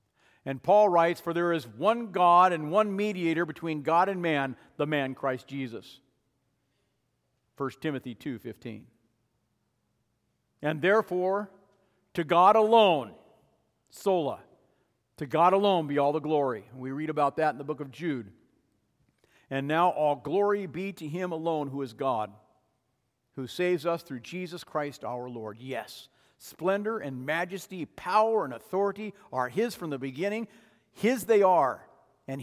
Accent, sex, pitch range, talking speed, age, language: American, male, 130-180 Hz, 145 wpm, 50-69, English